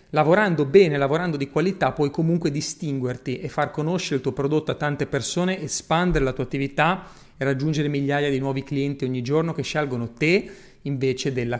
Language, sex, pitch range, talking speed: Italian, male, 135-170 Hz, 175 wpm